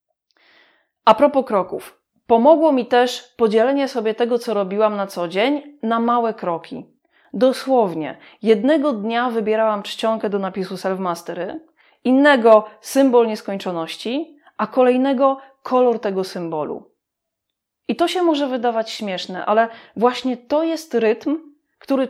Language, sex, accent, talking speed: Polish, female, native, 120 wpm